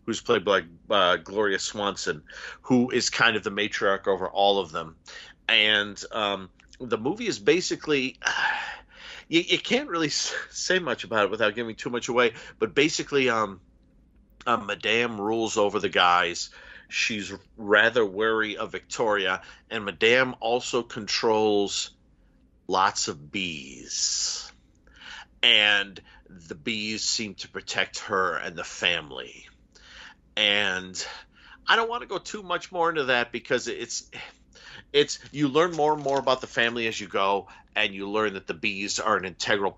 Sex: male